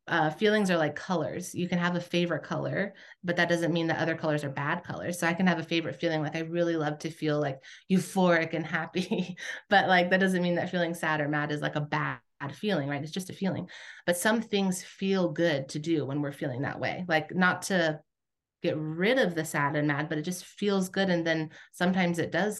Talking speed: 240 wpm